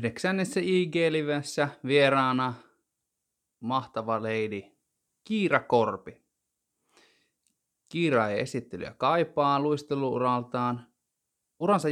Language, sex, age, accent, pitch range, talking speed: Finnish, male, 20-39, native, 110-135 Hz, 65 wpm